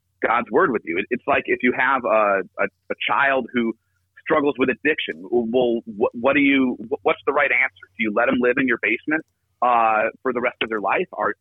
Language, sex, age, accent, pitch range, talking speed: English, male, 40-59, American, 110-140 Hz, 220 wpm